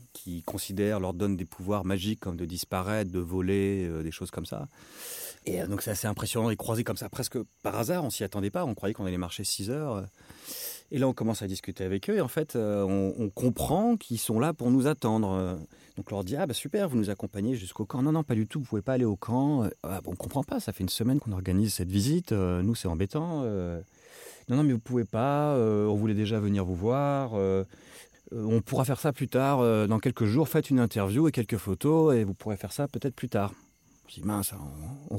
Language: French